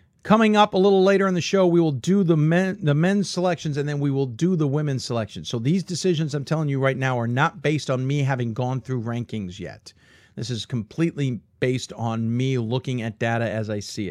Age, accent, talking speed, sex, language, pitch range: 50-69, American, 230 wpm, male, English, 125-190 Hz